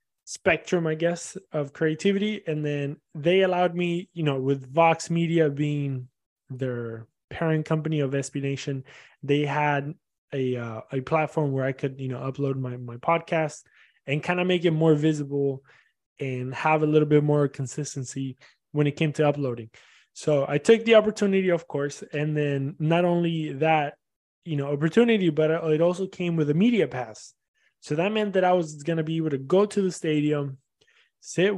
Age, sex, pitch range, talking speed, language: 20-39, male, 140-170 Hz, 180 wpm, English